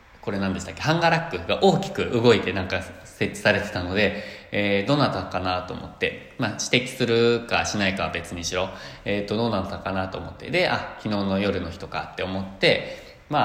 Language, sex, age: Japanese, male, 20-39